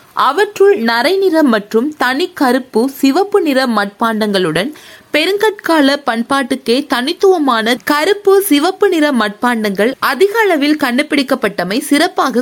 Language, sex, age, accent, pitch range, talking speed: Tamil, female, 20-39, native, 225-330 Hz, 80 wpm